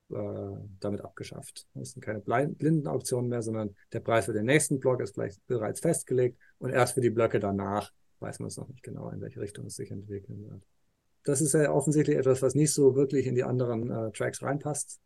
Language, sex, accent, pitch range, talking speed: German, male, German, 105-135 Hz, 210 wpm